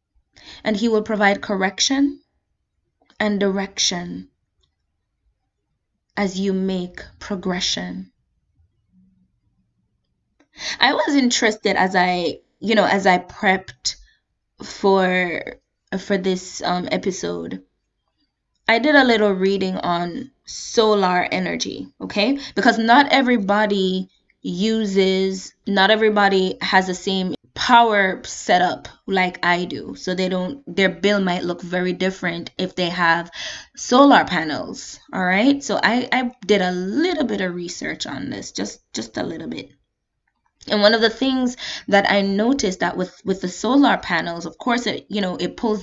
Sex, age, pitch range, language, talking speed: female, 20-39, 175-215 Hz, English, 135 wpm